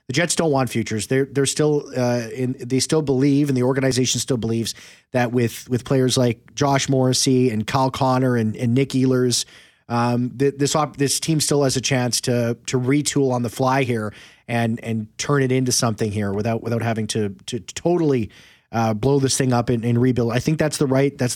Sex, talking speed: male, 215 wpm